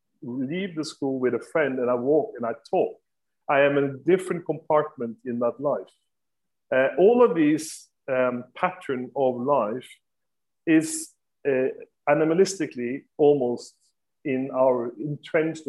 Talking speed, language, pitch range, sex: 140 wpm, German, 130-165 Hz, male